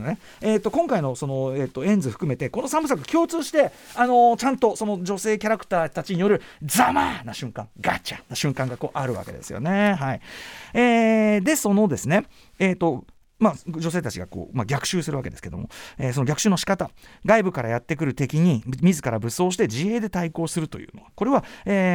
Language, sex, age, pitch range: Japanese, male, 40-59, 135-215 Hz